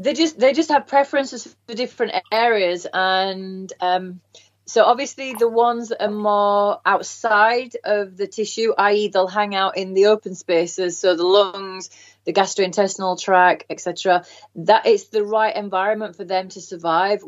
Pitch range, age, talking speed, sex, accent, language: 185-225 Hz, 30-49, 165 wpm, female, British, English